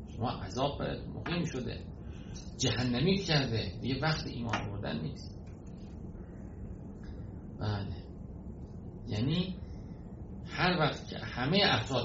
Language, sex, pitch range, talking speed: Persian, male, 100-145 Hz, 95 wpm